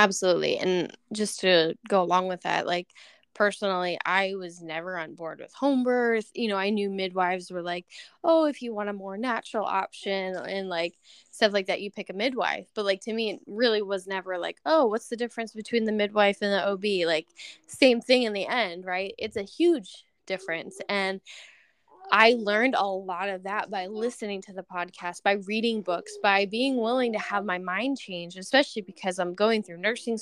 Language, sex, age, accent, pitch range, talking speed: English, female, 10-29, American, 185-225 Hz, 200 wpm